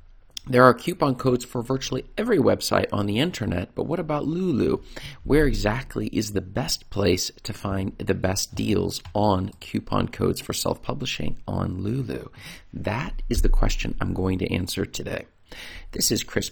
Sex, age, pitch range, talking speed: male, 40-59, 95-125 Hz, 165 wpm